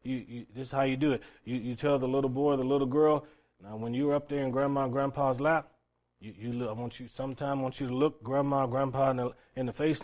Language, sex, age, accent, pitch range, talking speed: English, male, 30-49, American, 120-150 Hz, 275 wpm